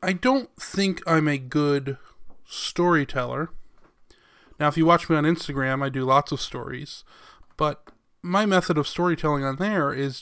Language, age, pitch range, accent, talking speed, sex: English, 20-39, 140-175 Hz, American, 160 wpm, male